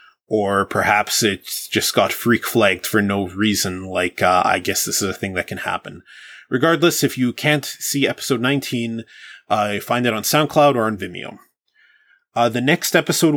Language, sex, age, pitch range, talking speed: English, male, 20-39, 105-135 Hz, 180 wpm